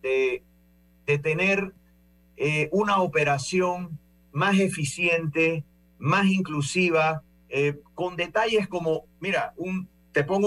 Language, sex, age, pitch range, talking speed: Spanish, male, 50-69, 135-180 Hz, 105 wpm